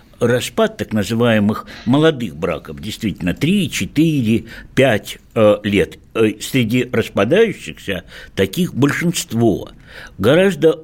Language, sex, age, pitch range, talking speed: Russian, male, 60-79, 105-150 Hz, 90 wpm